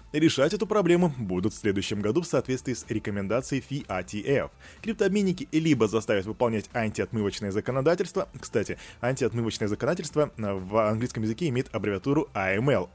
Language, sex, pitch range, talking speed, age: Russian, male, 105-155 Hz, 125 wpm, 20-39